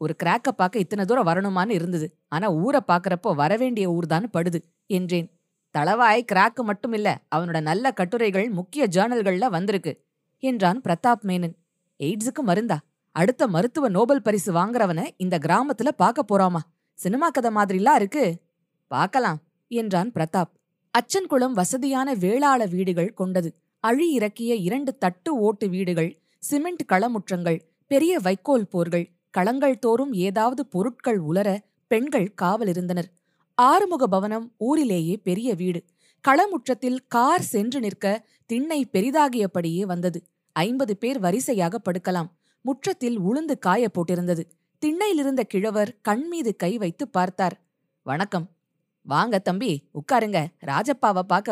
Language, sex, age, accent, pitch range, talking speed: Tamil, female, 20-39, native, 175-240 Hz, 120 wpm